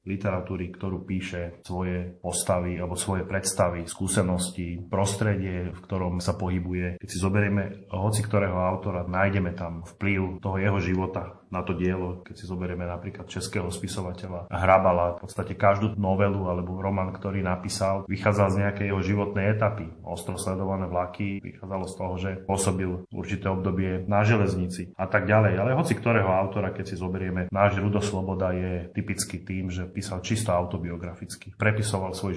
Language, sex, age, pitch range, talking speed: Slovak, male, 30-49, 90-100 Hz, 155 wpm